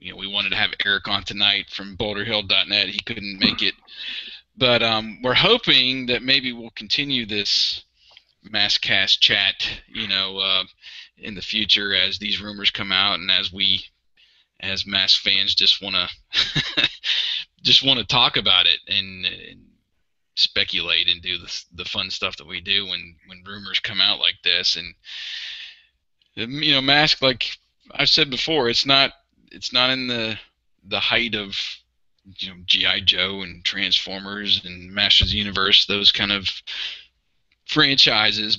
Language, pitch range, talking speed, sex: English, 95-115 Hz, 155 wpm, male